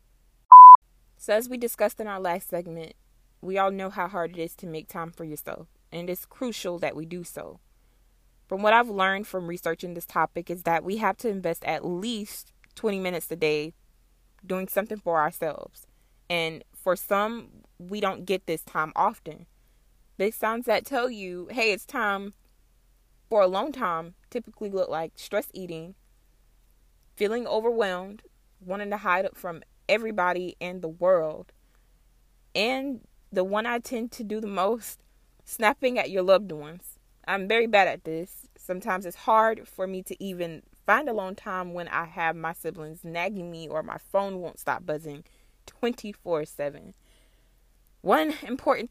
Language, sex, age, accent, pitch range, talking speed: English, female, 20-39, American, 170-215 Hz, 160 wpm